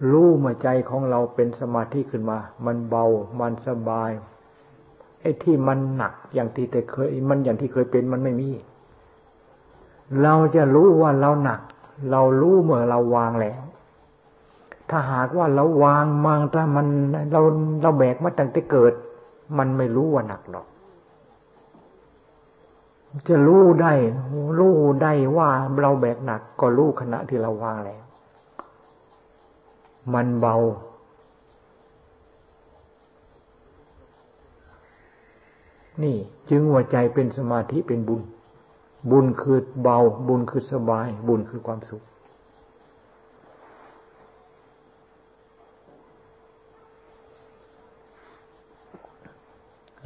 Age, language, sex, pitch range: 60-79, Thai, male, 115-145 Hz